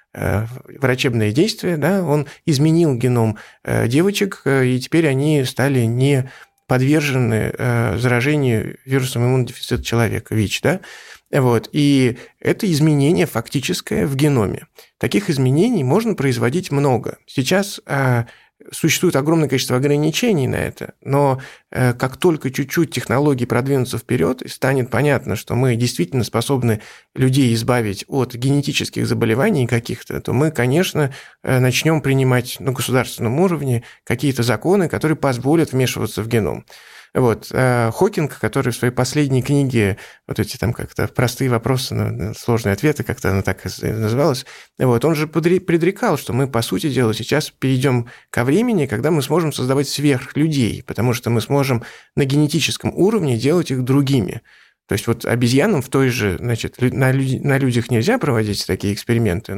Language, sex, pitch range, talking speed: Russian, male, 120-145 Hz, 135 wpm